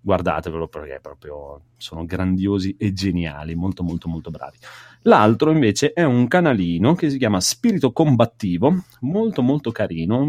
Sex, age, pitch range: male, 30-49, 95-130 Hz